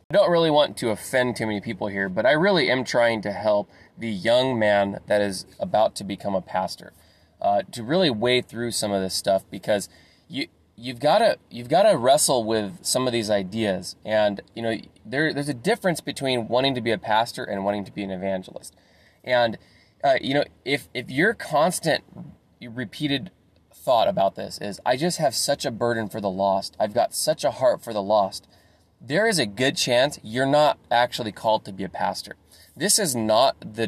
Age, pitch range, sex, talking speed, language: 20-39, 100-130 Hz, male, 200 wpm, English